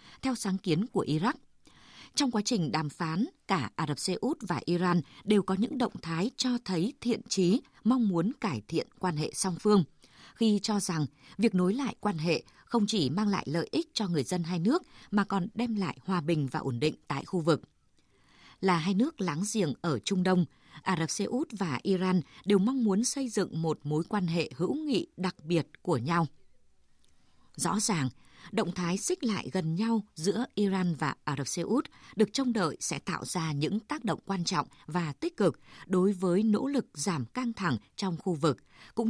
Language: Vietnamese